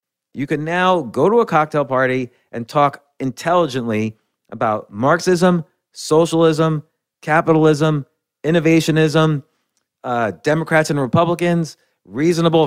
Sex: male